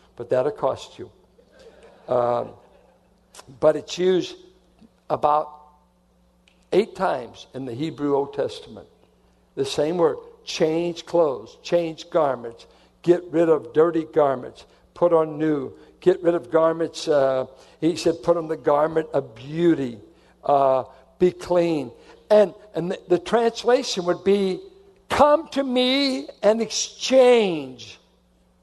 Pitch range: 150-240 Hz